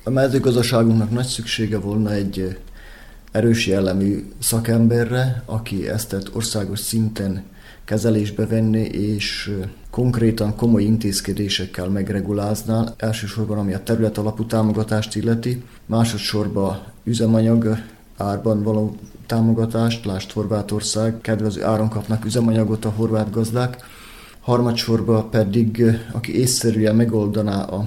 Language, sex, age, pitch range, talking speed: Hungarian, male, 30-49, 100-115 Hz, 100 wpm